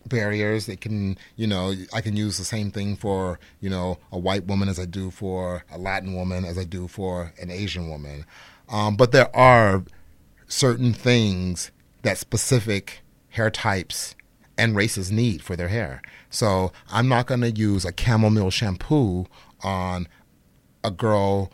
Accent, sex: American, male